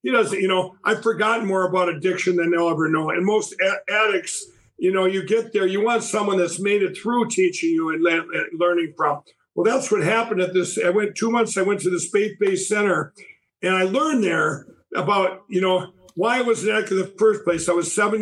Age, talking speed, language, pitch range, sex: 50-69, 230 wpm, English, 180-205 Hz, male